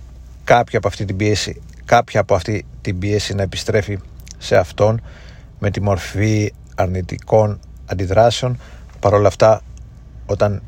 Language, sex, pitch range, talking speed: Greek, male, 95-115 Hz, 125 wpm